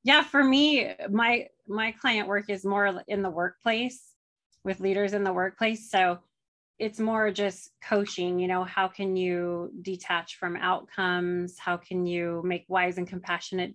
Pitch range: 185-225 Hz